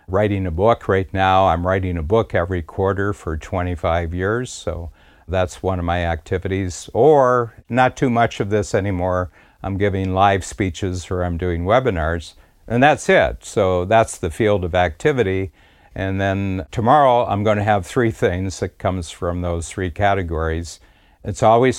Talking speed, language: 170 wpm, English